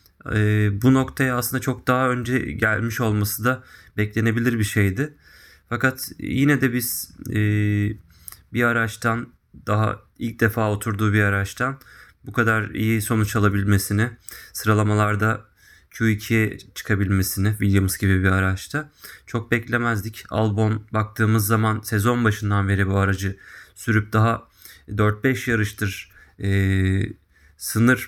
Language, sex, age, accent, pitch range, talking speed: Turkish, male, 30-49, native, 100-125 Hz, 110 wpm